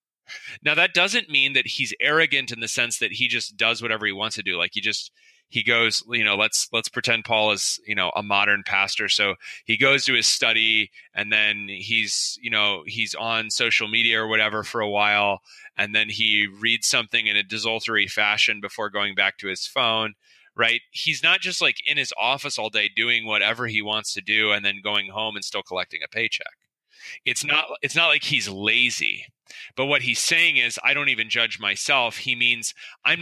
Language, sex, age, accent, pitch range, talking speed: English, male, 30-49, American, 105-125 Hz, 210 wpm